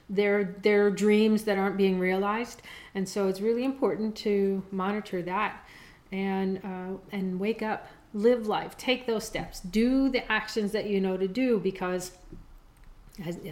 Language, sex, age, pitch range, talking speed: English, female, 40-59, 190-230 Hz, 155 wpm